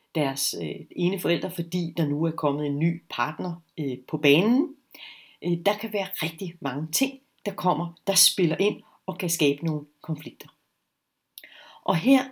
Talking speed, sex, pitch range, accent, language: 150 wpm, female, 155-195 Hz, native, Danish